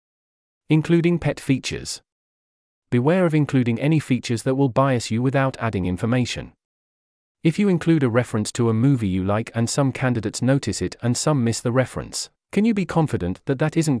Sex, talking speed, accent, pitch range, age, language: male, 180 wpm, British, 110-145 Hz, 40-59, English